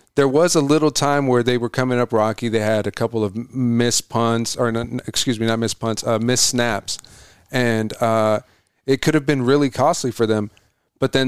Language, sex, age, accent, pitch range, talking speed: English, male, 30-49, American, 115-135 Hz, 215 wpm